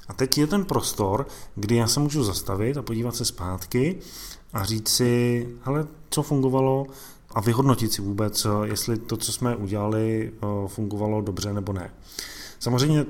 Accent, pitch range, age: native, 100-120 Hz, 20-39